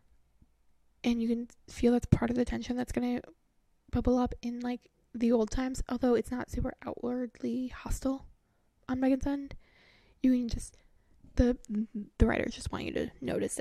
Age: 10-29